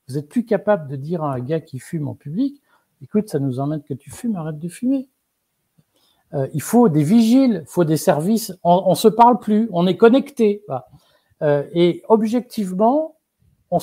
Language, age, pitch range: French, 50-69, 125-180 Hz